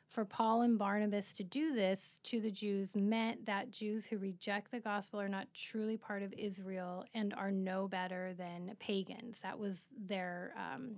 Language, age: English, 30-49